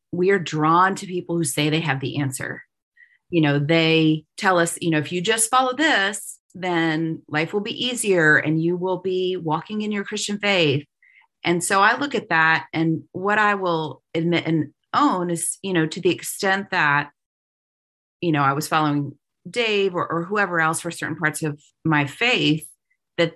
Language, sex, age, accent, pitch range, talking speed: English, female, 30-49, American, 155-200 Hz, 190 wpm